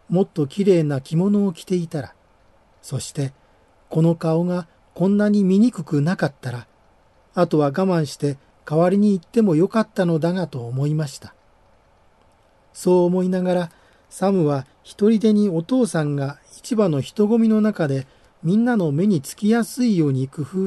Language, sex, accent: Japanese, male, native